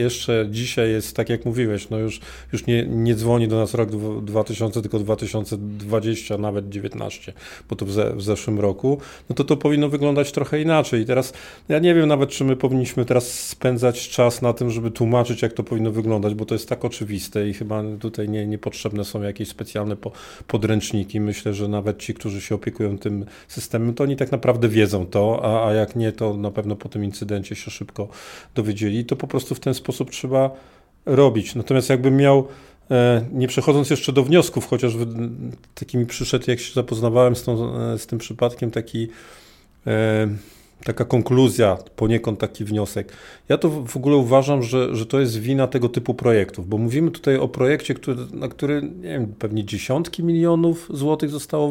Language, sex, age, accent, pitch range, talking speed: Polish, male, 40-59, native, 110-135 Hz, 185 wpm